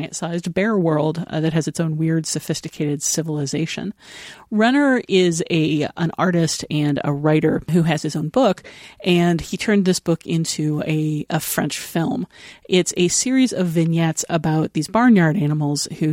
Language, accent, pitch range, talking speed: English, American, 155-190 Hz, 165 wpm